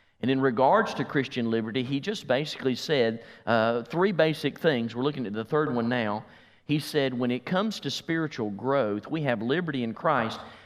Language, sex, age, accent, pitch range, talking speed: English, male, 40-59, American, 115-155 Hz, 190 wpm